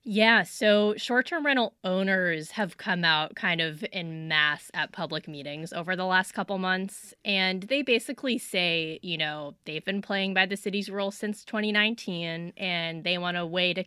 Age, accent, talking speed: 20-39, American, 175 wpm